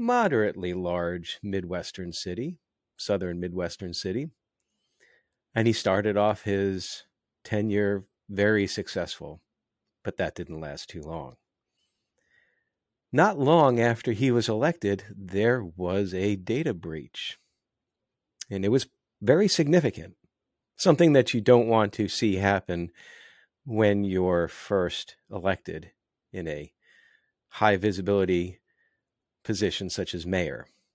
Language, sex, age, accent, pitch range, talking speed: English, male, 40-59, American, 90-115 Hz, 110 wpm